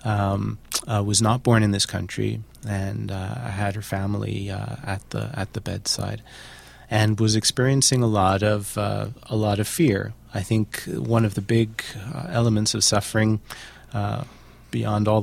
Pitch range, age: 105-120 Hz, 30-49